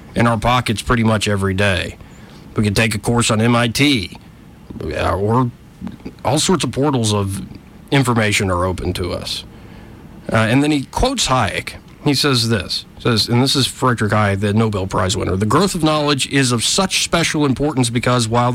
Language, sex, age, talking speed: English, male, 40-59, 180 wpm